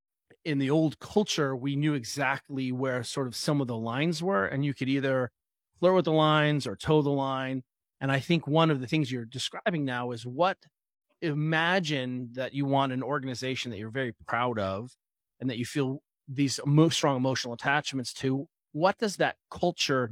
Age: 30-49